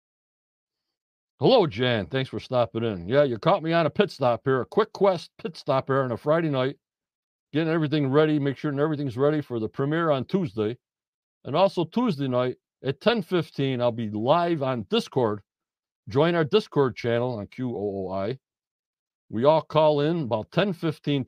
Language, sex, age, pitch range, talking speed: English, male, 60-79, 110-155 Hz, 170 wpm